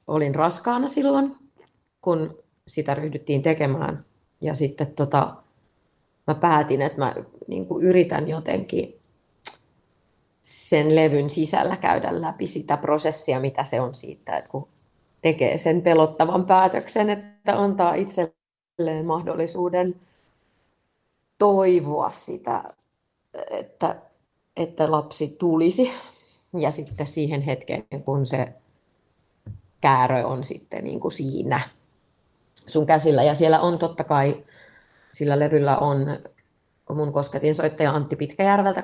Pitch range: 145-175 Hz